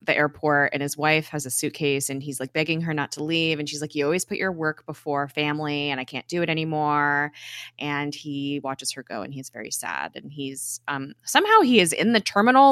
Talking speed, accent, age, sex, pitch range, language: 235 wpm, American, 20-39, female, 140-170 Hz, English